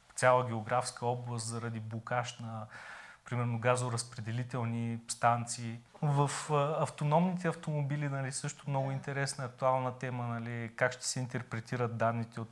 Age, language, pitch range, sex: 30-49, Bulgarian, 115-140 Hz, male